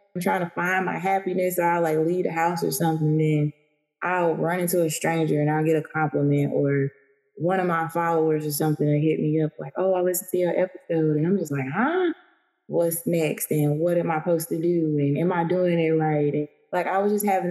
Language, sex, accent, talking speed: English, female, American, 235 wpm